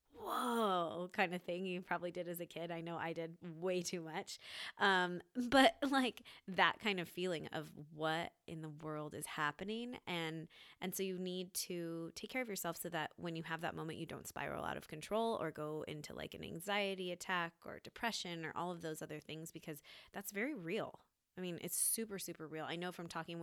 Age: 20-39